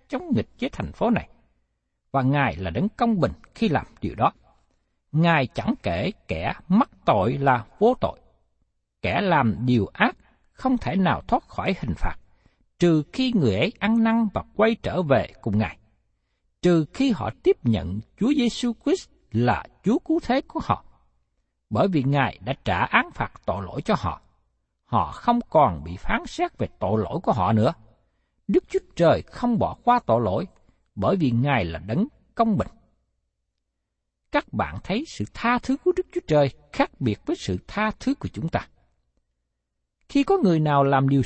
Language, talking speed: Vietnamese, 180 wpm